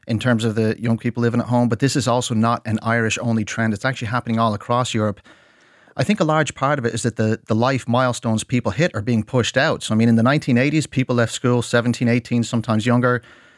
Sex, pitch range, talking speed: male, 115-125 Hz, 245 wpm